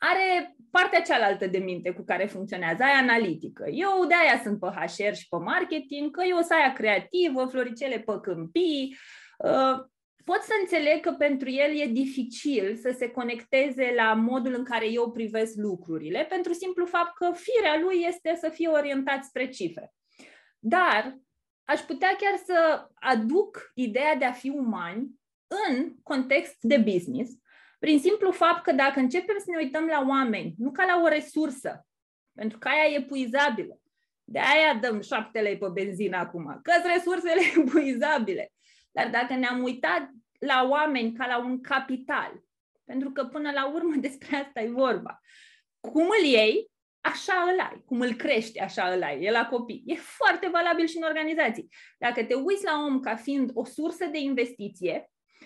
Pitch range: 240-330 Hz